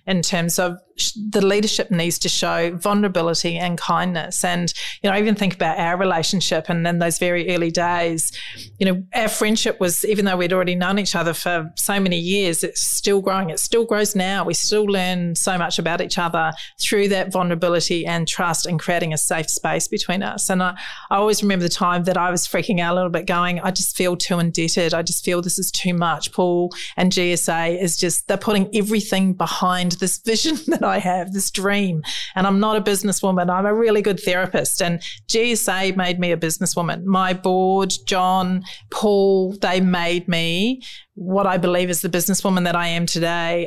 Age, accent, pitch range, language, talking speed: 40-59, Australian, 175-200 Hz, English, 200 wpm